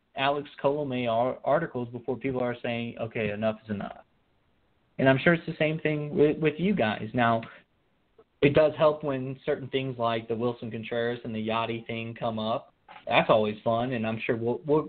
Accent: American